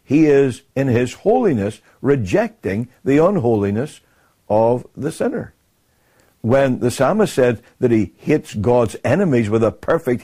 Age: 60-79